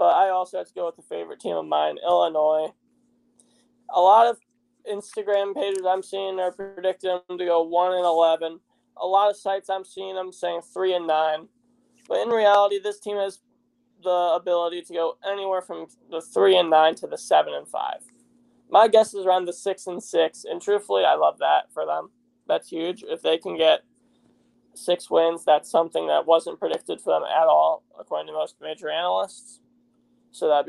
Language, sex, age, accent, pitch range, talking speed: English, male, 20-39, American, 175-240 Hz, 195 wpm